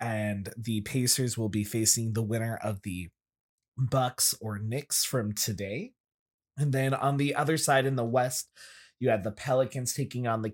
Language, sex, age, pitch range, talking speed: English, male, 20-39, 115-170 Hz, 175 wpm